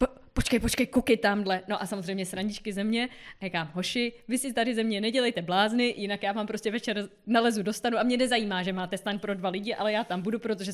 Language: Czech